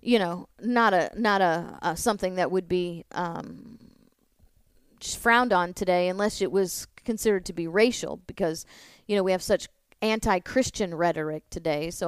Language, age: English, 30-49